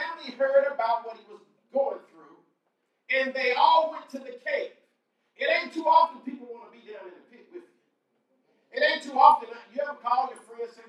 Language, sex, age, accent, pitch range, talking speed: English, male, 40-59, American, 215-305 Hz, 220 wpm